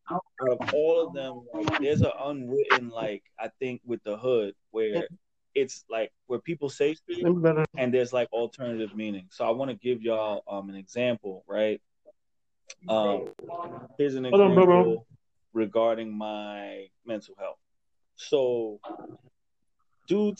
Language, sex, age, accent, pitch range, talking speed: English, male, 20-39, American, 110-145 Hz, 140 wpm